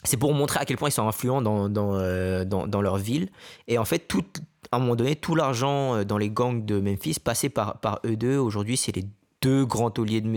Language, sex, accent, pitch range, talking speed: French, male, French, 105-135 Hz, 245 wpm